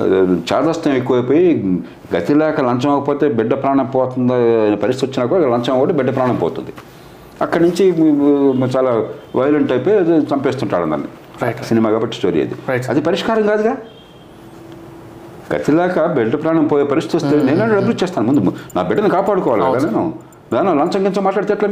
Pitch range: 120-175 Hz